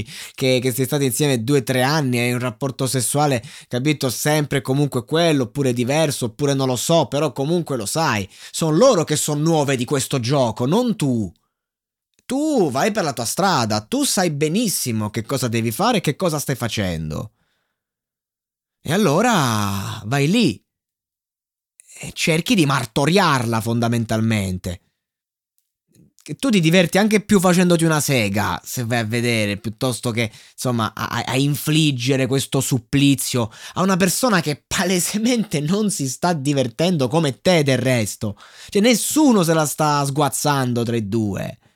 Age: 20-39